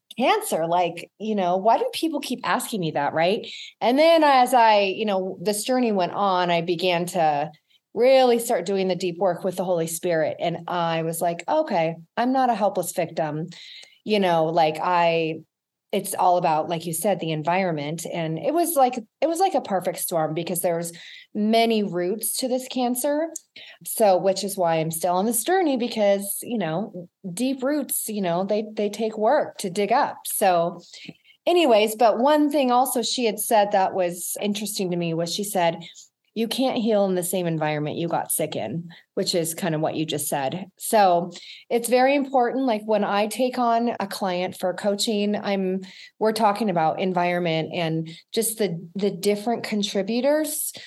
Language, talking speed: English, 185 wpm